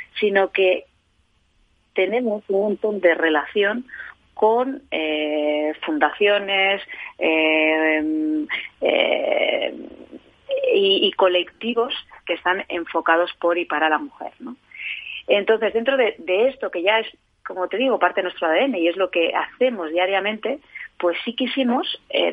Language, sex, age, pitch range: Spanish, female, 30-49, 160-225 Hz